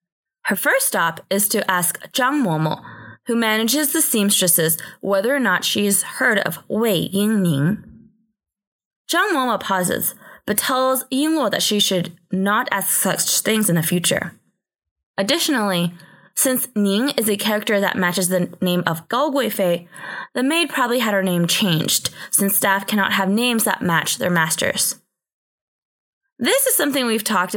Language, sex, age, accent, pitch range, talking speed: English, female, 20-39, American, 175-235 Hz, 155 wpm